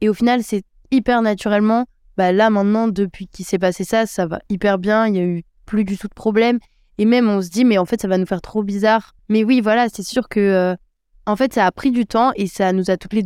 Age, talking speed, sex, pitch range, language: 20-39, 275 wpm, female, 190-225 Hz, French